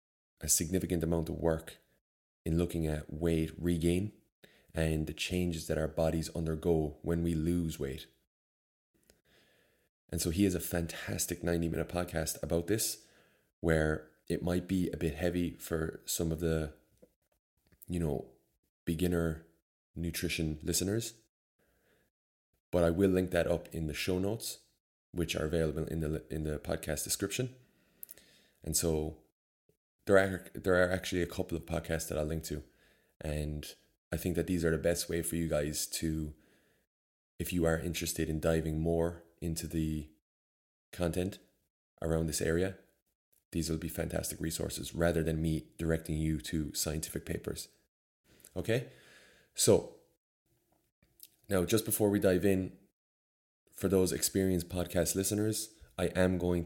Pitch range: 80-90 Hz